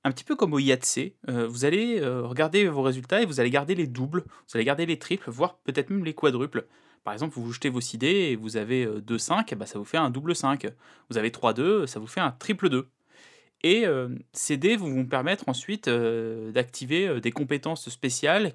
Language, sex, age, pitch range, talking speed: French, male, 20-39, 125-170 Hz, 230 wpm